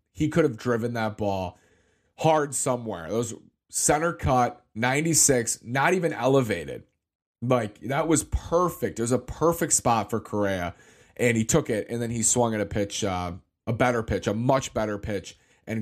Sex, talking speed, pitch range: male, 180 wpm, 100-125 Hz